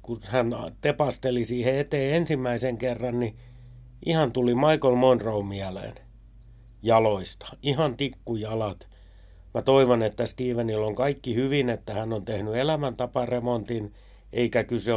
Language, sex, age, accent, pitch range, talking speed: Finnish, male, 60-79, native, 100-135 Hz, 120 wpm